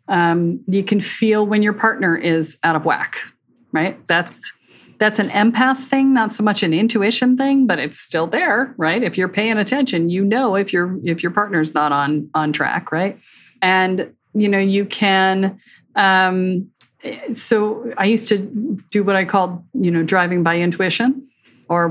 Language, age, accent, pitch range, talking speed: English, 40-59, American, 170-215 Hz, 175 wpm